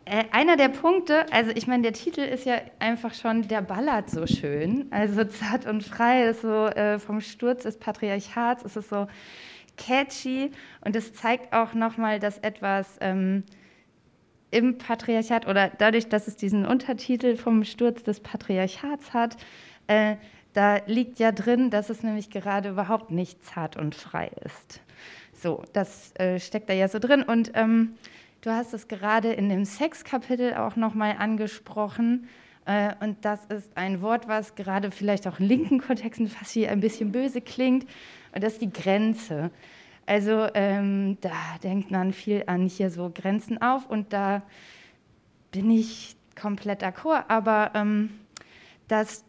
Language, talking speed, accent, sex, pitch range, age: German, 160 wpm, German, female, 200-230 Hz, 20-39